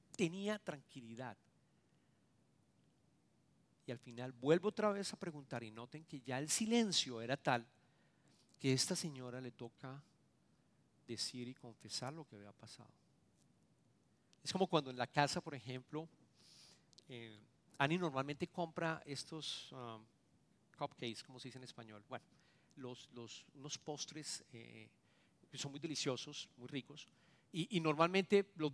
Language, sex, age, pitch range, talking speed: English, male, 40-59, 125-175 Hz, 140 wpm